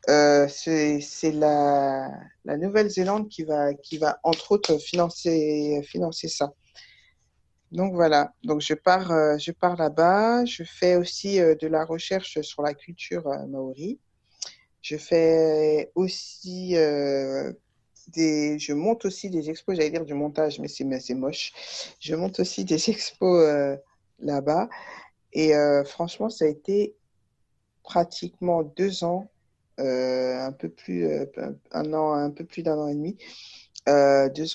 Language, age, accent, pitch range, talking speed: French, 50-69, French, 135-170 Hz, 150 wpm